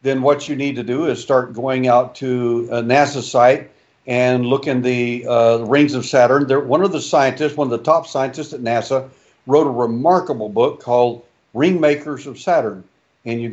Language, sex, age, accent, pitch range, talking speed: English, male, 60-79, American, 120-145 Hz, 190 wpm